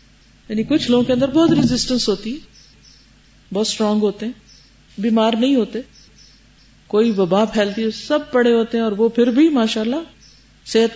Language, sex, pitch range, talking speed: Urdu, female, 205-290 Hz, 165 wpm